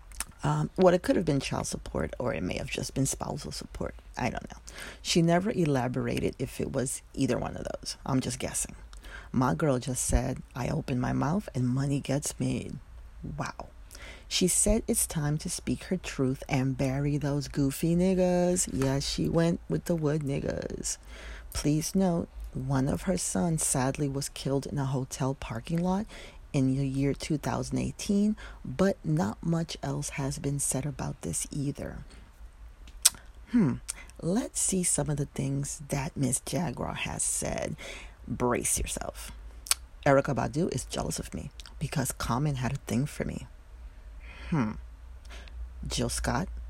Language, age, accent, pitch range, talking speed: English, 40-59, American, 115-155 Hz, 160 wpm